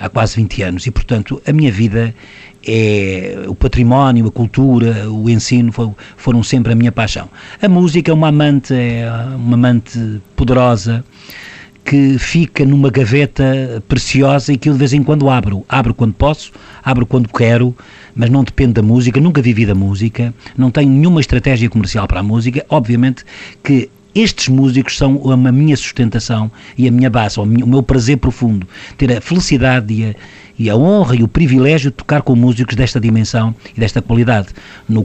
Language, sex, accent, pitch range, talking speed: Portuguese, male, Portuguese, 110-130 Hz, 175 wpm